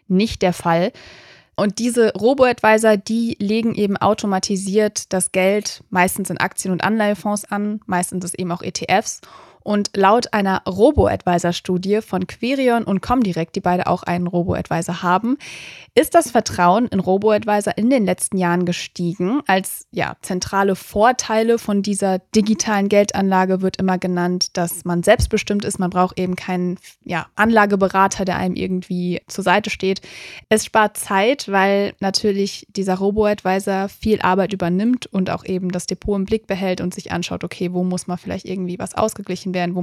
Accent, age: German, 20-39